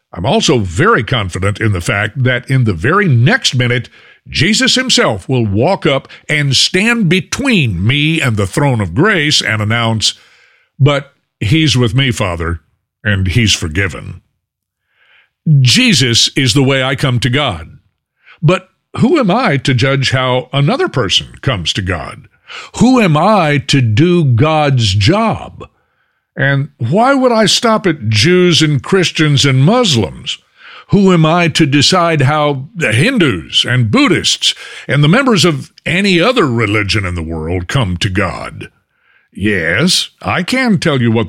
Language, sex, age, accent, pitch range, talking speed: English, male, 60-79, American, 115-175 Hz, 150 wpm